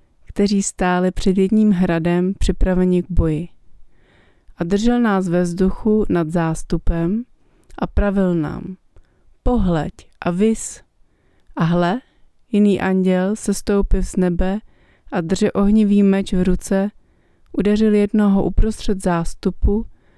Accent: native